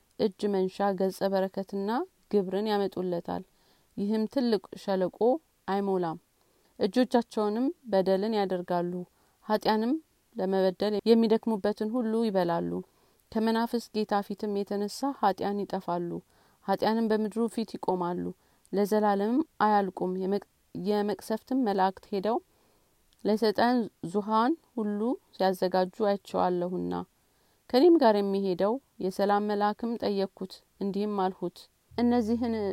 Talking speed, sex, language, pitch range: 85 wpm, female, Amharic, 185-220 Hz